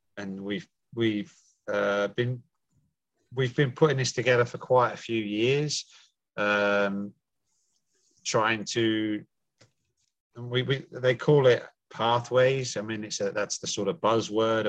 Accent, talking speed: British, 135 wpm